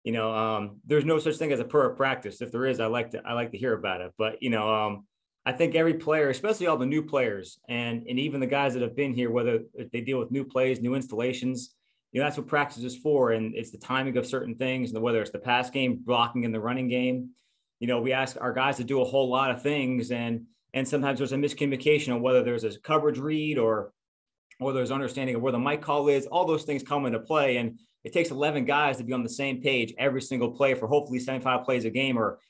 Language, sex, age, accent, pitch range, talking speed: English, male, 30-49, American, 120-145 Hz, 260 wpm